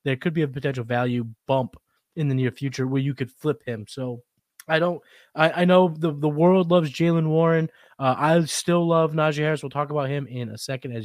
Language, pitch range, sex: English, 135-165 Hz, male